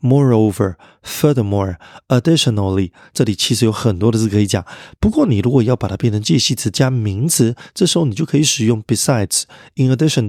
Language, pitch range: Chinese, 105-135 Hz